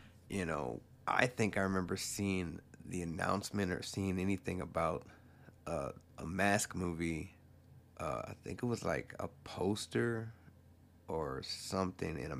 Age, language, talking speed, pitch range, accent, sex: 30-49, English, 140 wpm, 90-105 Hz, American, male